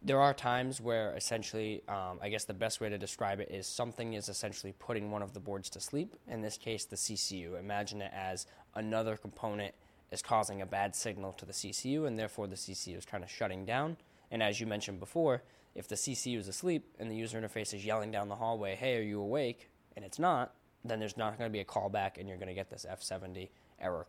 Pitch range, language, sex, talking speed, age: 95-115 Hz, English, male, 235 wpm, 10-29